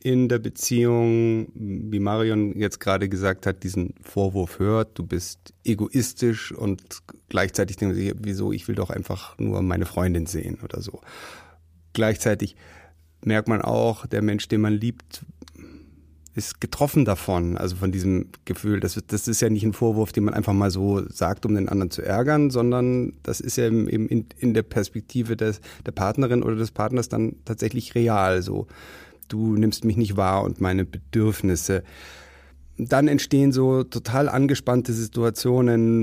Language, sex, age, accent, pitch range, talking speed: German, male, 30-49, German, 95-125 Hz, 165 wpm